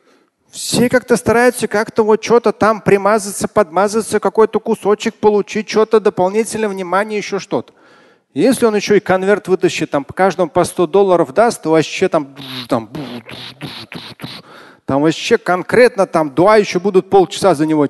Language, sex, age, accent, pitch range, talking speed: Russian, male, 30-49, native, 135-210 Hz, 155 wpm